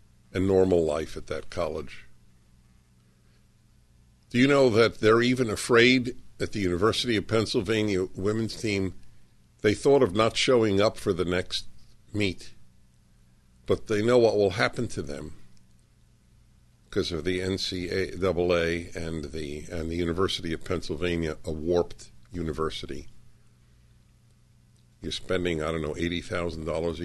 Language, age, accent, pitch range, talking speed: English, 50-69, American, 70-105 Hz, 125 wpm